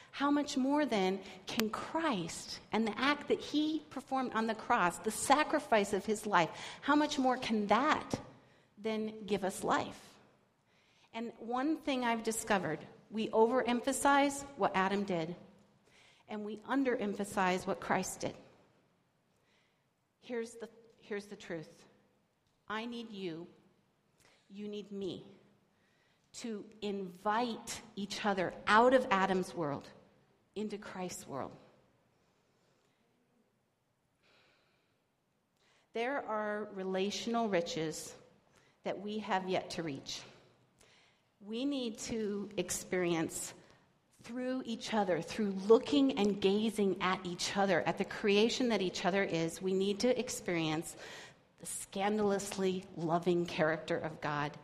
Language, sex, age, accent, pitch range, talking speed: English, female, 50-69, American, 185-235 Hz, 120 wpm